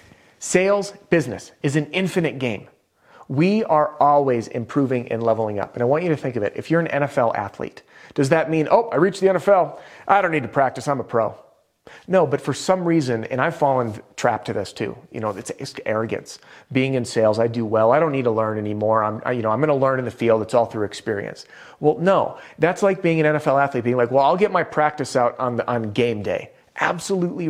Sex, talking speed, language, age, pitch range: male, 235 wpm, English, 30-49, 115-150 Hz